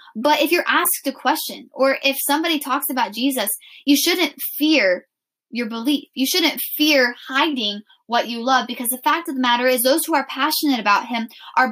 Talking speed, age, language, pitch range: 195 wpm, 10-29, English, 230-300 Hz